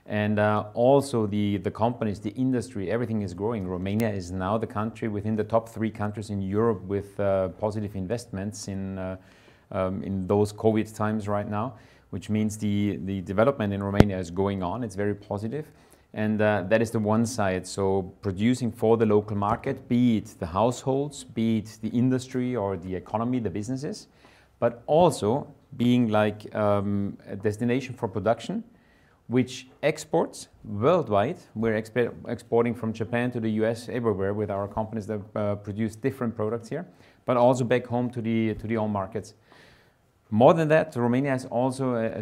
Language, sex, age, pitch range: Romanian, male, 30-49, 100-115 Hz